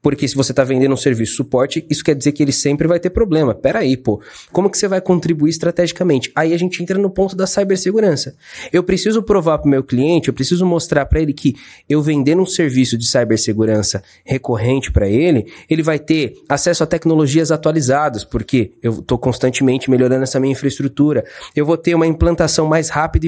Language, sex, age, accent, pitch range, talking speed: Portuguese, male, 20-39, Brazilian, 140-175 Hz, 200 wpm